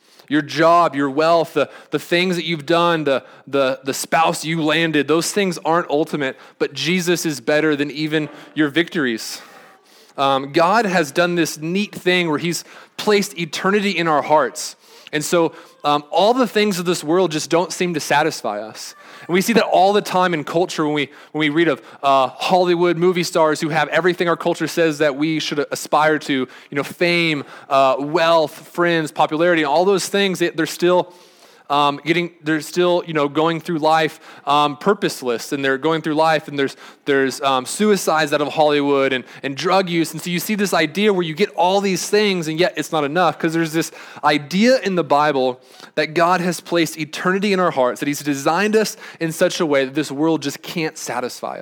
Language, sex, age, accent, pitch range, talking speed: English, male, 20-39, American, 145-175 Hz, 200 wpm